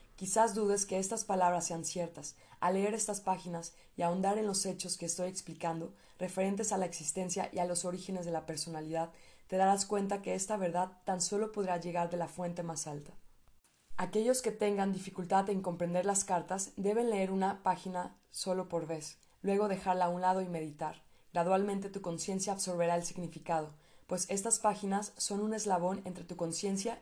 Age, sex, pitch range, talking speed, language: 20-39, female, 175-195 Hz, 180 wpm, Spanish